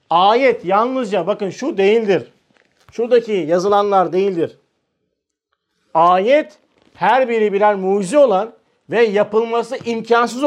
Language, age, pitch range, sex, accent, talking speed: Turkish, 50-69, 170-245 Hz, male, native, 95 wpm